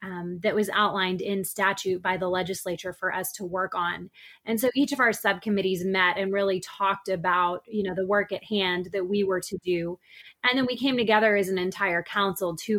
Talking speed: 215 wpm